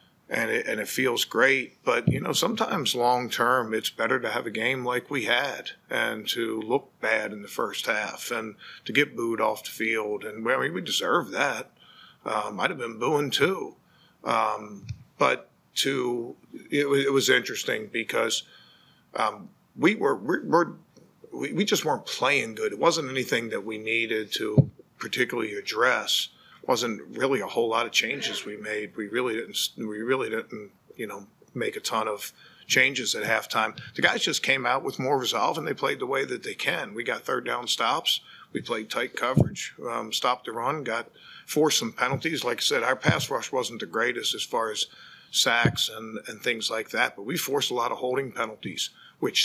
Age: 50-69